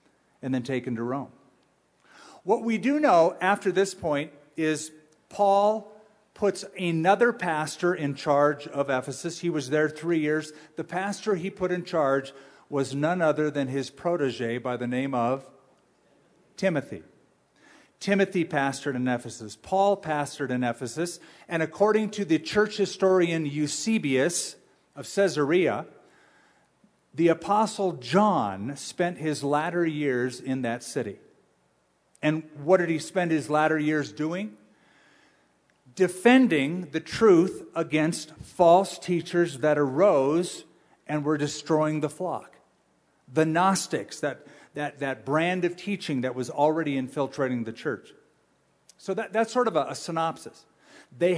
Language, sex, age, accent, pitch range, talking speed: English, male, 50-69, American, 140-185 Hz, 135 wpm